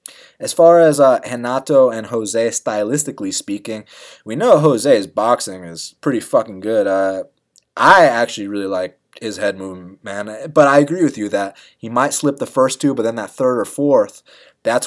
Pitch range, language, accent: 110-155 Hz, English, American